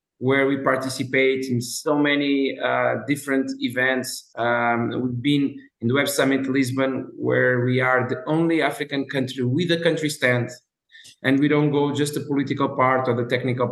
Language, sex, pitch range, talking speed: English, male, 125-140 Hz, 170 wpm